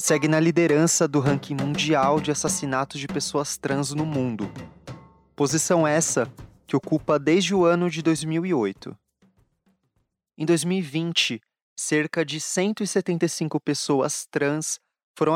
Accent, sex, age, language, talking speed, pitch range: Brazilian, male, 20-39, Portuguese, 115 wpm, 140-170 Hz